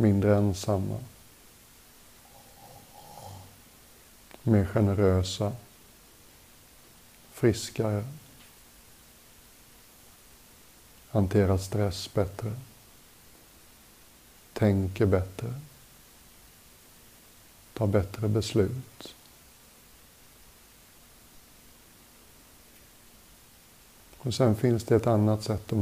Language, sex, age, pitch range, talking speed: Swedish, male, 60-79, 100-115 Hz, 50 wpm